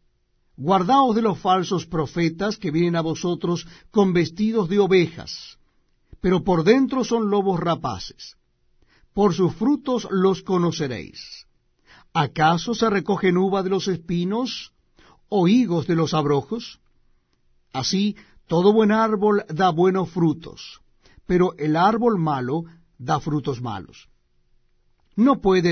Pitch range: 155-210 Hz